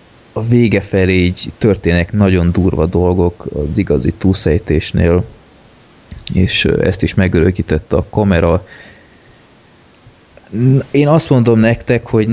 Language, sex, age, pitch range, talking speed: Hungarian, male, 20-39, 85-105 Hz, 100 wpm